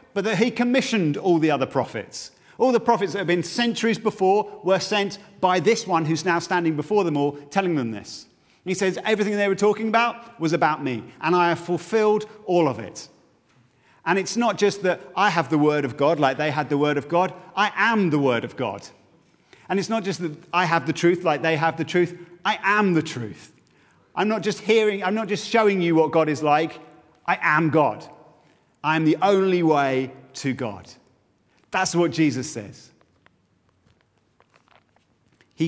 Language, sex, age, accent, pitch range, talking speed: English, male, 40-59, British, 130-185 Hz, 195 wpm